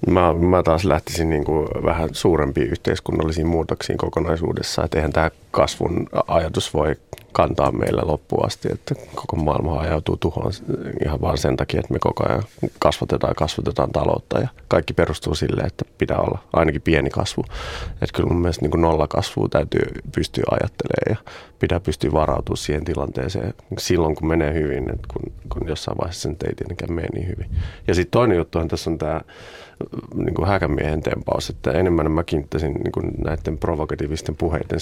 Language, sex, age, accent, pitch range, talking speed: Finnish, male, 30-49, native, 75-90 Hz, 160 wpm